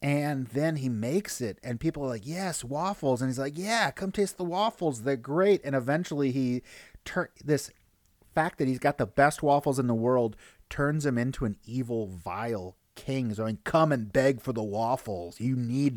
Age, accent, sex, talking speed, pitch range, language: 30-49, American, male, 205 wpm, 110-140 Hz, English